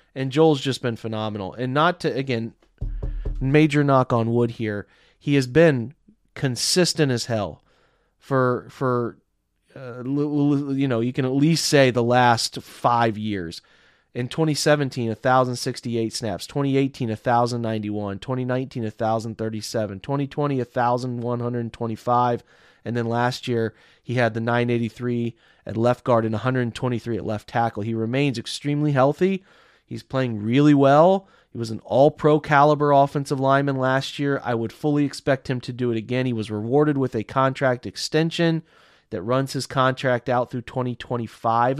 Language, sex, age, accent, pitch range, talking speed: English, male, 30-49, American, 115-140 Hz, 145 wpm